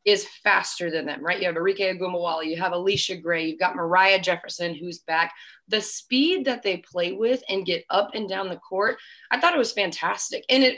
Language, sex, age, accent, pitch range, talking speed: English, female, 20-39, American, 175-215 Hz, 210 wpm